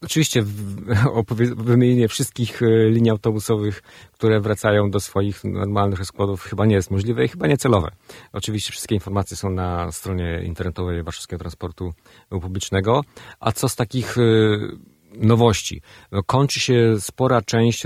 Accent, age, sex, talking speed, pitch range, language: native, 40-59, male, 125 wpm, 90-110 Hz, Polish